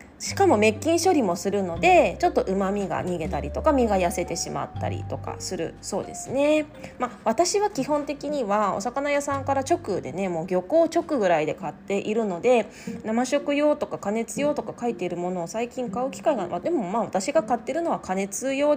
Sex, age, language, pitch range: female, 20-39, Japanese, 190-295 Hz